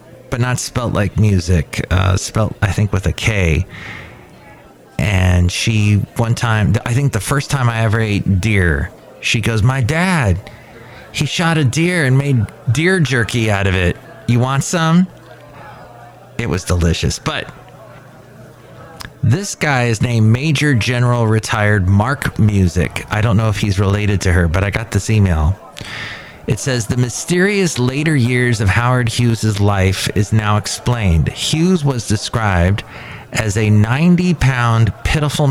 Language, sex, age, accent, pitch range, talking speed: English, male, 30-49, American, 100-130 Hz, 150 wpm